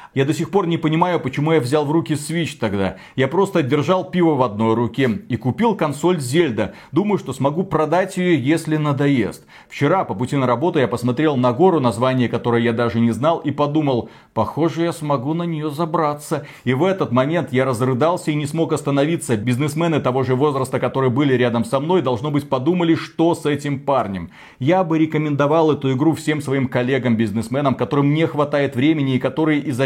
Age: 30-49